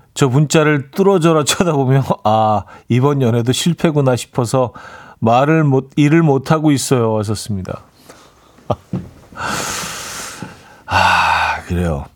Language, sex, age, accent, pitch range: Korean, male, 40-59, native, 115-155 Hz